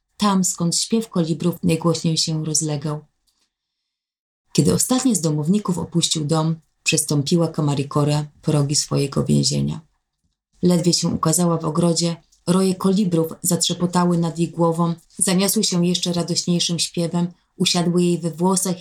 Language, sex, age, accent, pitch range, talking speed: Polish, female, 20-39, native, 145-175 Hz, 125 wpm